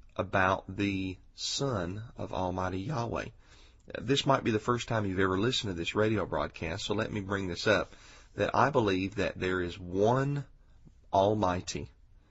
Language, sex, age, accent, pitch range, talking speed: English, male, 40-59, American, 95-110 Hz, 160 wpm